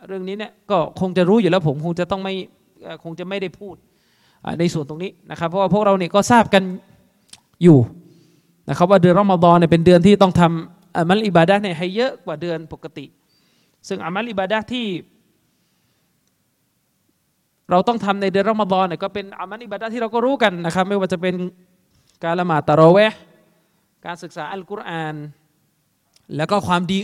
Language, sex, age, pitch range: Thai, male, 20-39, 165-210 Hz